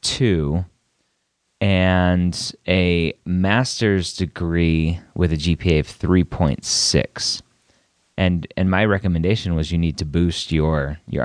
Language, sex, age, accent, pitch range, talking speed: English, male, 30-49, American, 80-95 Hz, 110 wpm